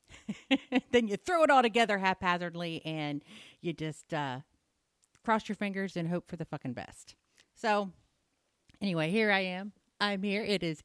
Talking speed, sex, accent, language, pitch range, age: 160 wpm, female, American, English, 165-250 Hz, 40-59